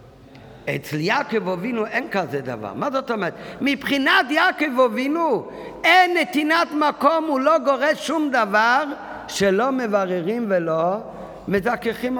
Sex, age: male, 50-69